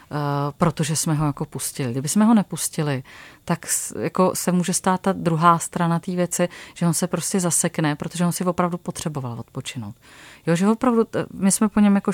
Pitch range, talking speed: 155-195 Hz, 205 wpm